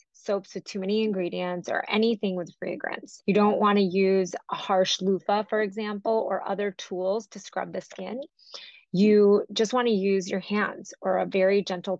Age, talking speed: 20-39, 175 wpm